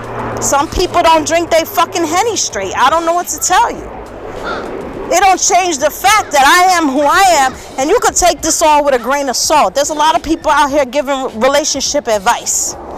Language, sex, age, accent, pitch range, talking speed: English, female, 40-59, American, 255-320 Hz, 215 wpm